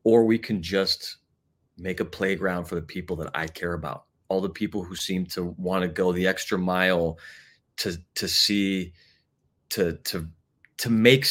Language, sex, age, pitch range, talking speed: English, male, 30-49, 85-105 Hz, 170 wpm